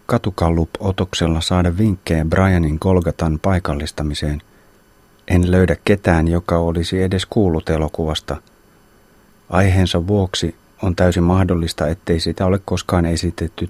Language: Finnish